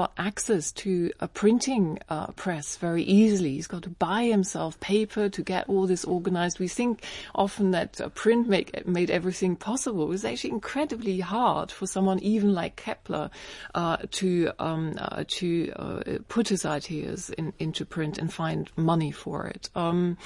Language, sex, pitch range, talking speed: English, female, 165-200 Hz, 165 wpm